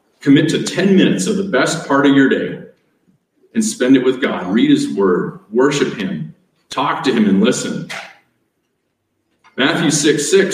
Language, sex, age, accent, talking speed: English, male, 40-59, American, 165 wpm